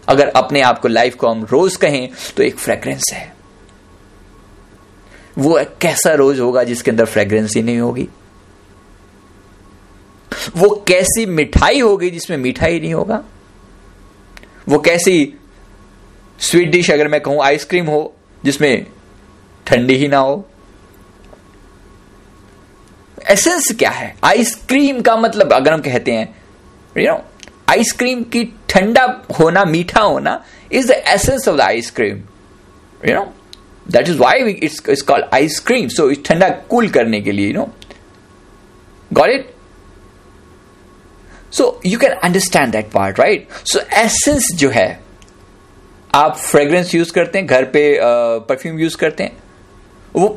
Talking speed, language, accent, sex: 135 wpm, Hindi, native, male